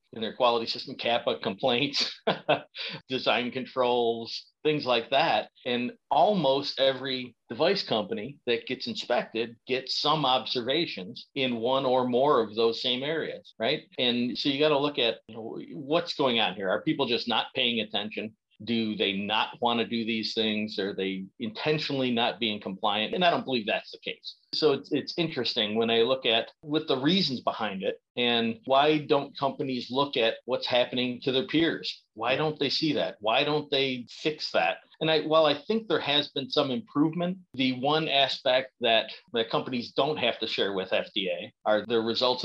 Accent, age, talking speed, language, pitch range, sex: American, 50-69, 180 wpm, English, 115-145 Hz, male